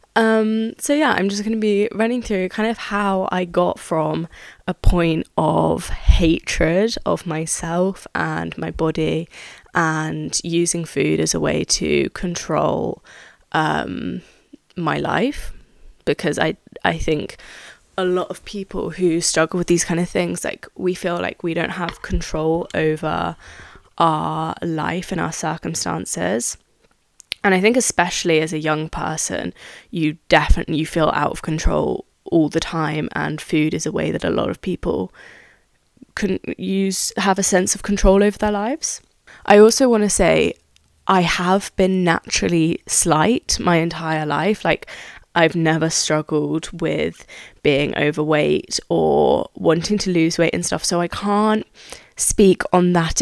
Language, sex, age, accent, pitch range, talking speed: English, female, 20-39, British, 160-200 Hz, 150 wpm